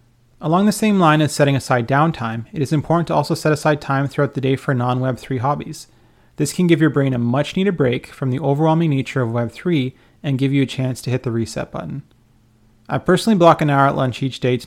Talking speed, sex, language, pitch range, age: 235 wpm, male, English, 125-155 Hz, 30-49